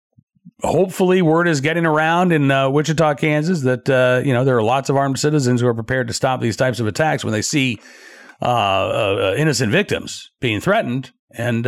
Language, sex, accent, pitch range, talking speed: English, male, American, 125-160 Hz, 195 wpm